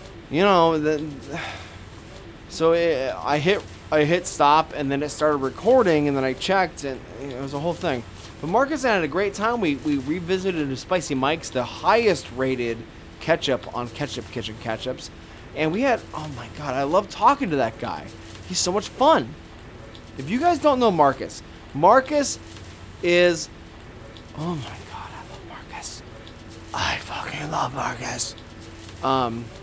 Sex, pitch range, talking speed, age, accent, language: male, 110-165 Hz, 165 wpm, 20-39, American, English